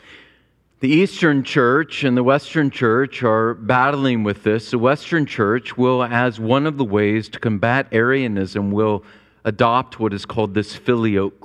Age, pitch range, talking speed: 40-59, 105-135 Hz, 155 wpm